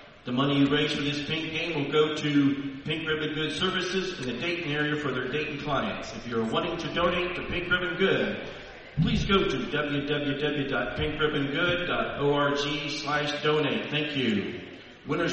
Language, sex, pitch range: English, male, 140-160 Hz